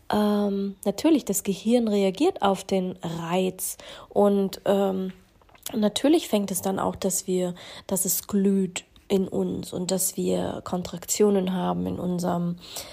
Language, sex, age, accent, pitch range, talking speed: German, female, 20-39, German, 185-220 Hz, 130 wpm